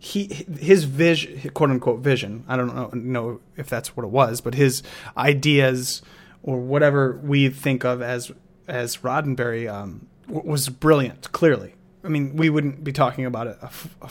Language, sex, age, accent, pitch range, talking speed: English, male, 30-49, American, 125-150 Hz, 160 wpm